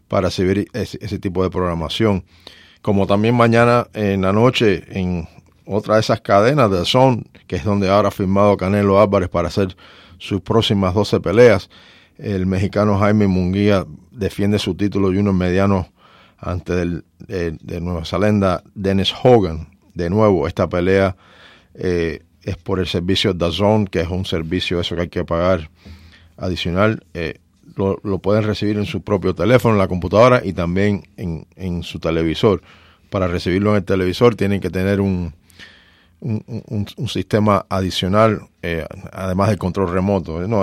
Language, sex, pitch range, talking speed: English, male, 90-105 Hz, 165 wpm